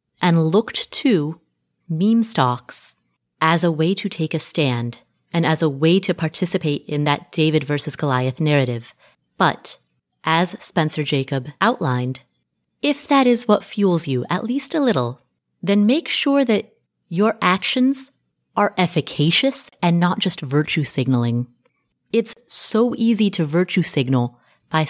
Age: 30-49